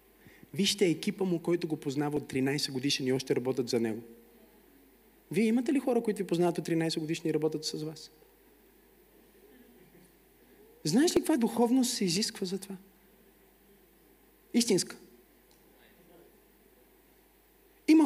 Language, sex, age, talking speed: Bulgarian, male, 30-49, 125 wpm